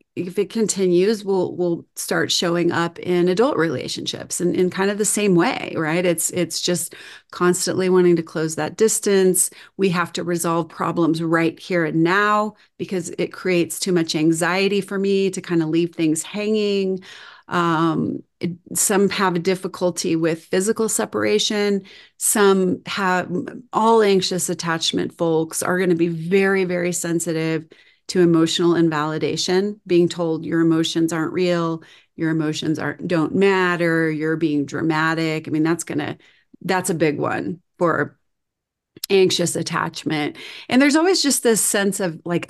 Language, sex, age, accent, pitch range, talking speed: English, female, 30-49, American, 165-195 Hz, 155 wpm